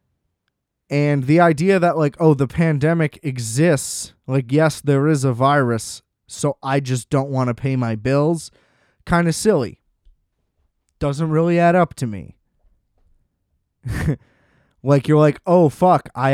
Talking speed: 145 wpm